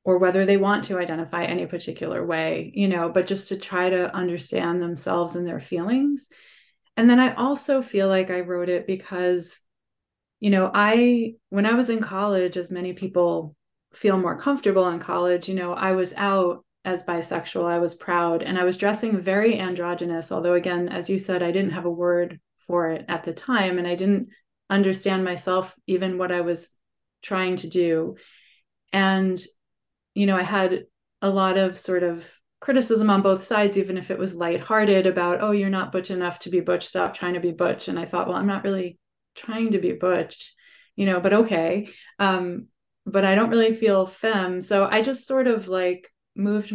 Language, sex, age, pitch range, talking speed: English, female, 30-49, 175-200 Hz, 195 wpm